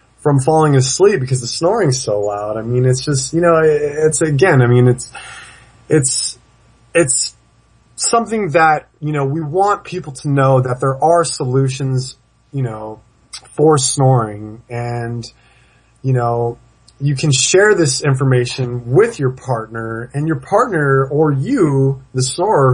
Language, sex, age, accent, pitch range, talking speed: English, male, 20-39, American, 120-150 Hz, 150 wpm